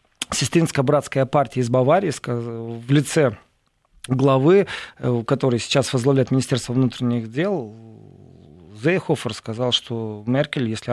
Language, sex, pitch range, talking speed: Russian, male, 135-190 Hz, 105 wpm